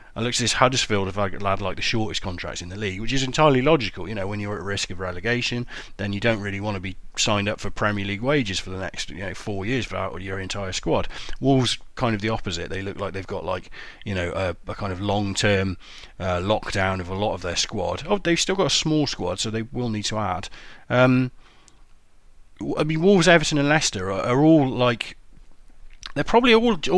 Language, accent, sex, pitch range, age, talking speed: English, British, male, 95-125 Hz, 30-49, 230 wpm